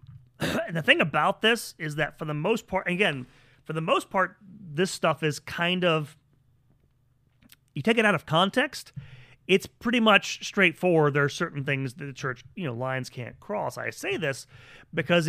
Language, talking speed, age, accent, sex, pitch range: English, 185 wpm, 30-49, American, male, 130-170 Hz